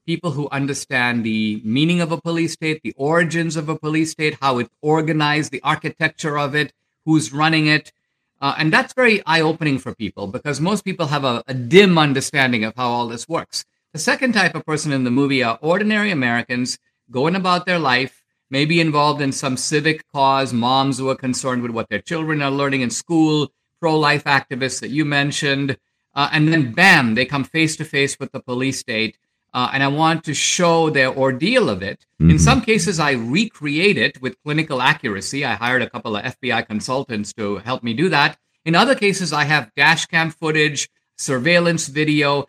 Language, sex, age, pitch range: English, male, 50-69, 130-165 Hz